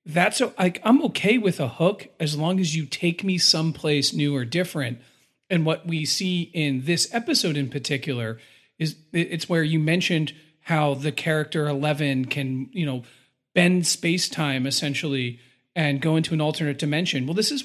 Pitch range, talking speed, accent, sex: 145-185 Hz, 175 wpm, American, male